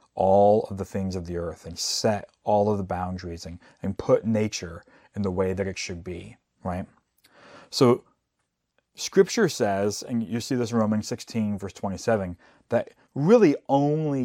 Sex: male